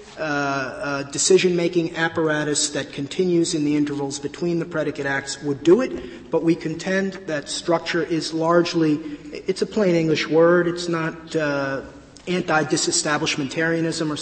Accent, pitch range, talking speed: American, 150-200 Hz, 140 wpm